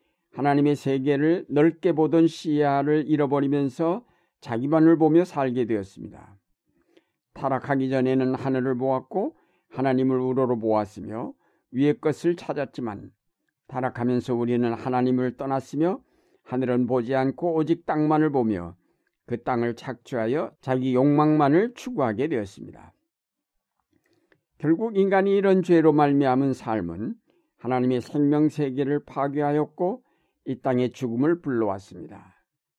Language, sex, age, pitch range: Korean, male, 50-69, 125-150 Hz